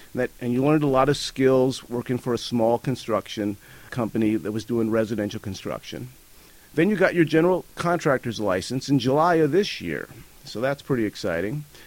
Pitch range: 110-145 Hz